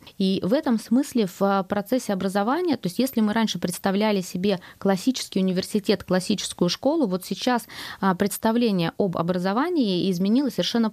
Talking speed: 135 wpm